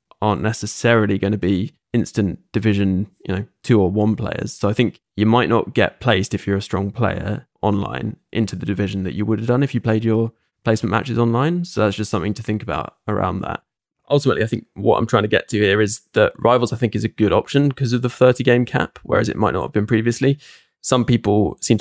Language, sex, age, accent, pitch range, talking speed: English, male, 20-39, British, 100-120 Hz, 235 wpm